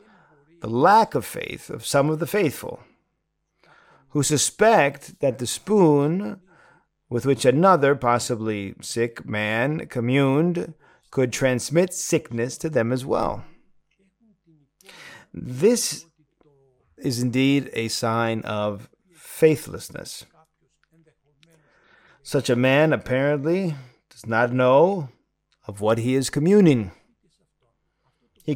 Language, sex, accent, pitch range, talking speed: English, male, American, 120-165 Hz, 100 wpm